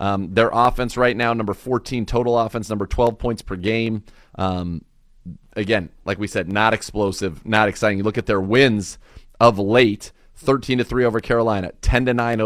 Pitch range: 95-115 Hz